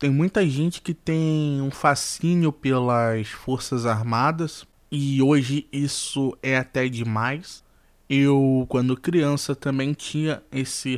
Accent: Brazilian